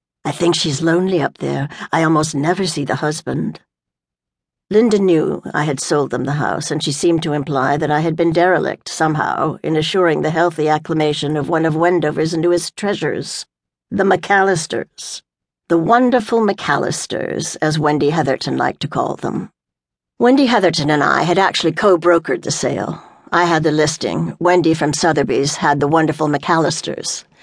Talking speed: 160 wpm